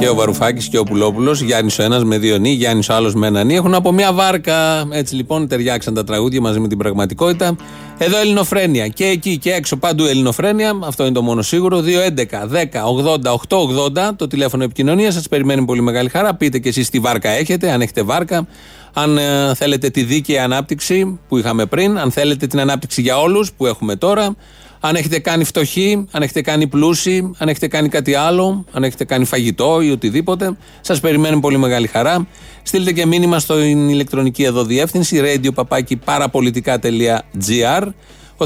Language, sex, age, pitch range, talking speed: Greek, male, 30-49, 120-170 Hz, 185 wpm